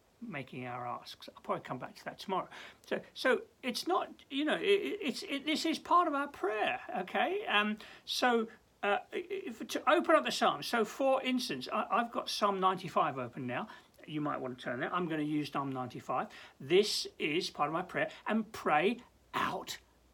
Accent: British